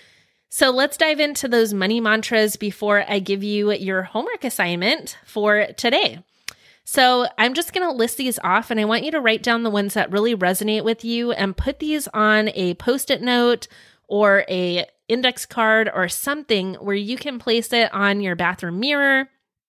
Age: 20-39